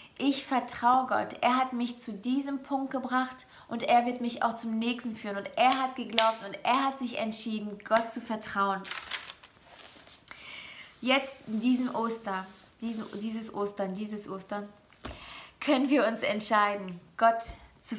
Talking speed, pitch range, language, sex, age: 145 wpm, 215-250 Hz, German, female, 20-39